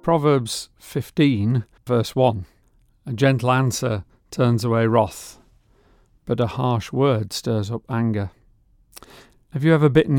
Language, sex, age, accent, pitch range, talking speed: English, male, 50-69, British, 115-130 Hz, 125 wpm